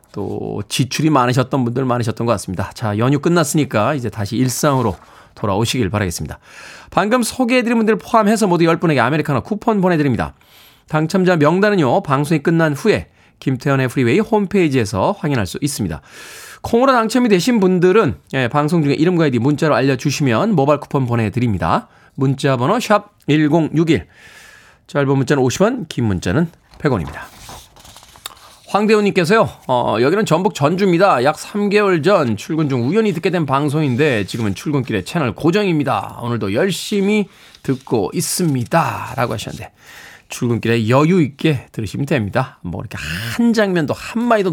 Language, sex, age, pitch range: Korean, male, 20-39, 120-185 Hz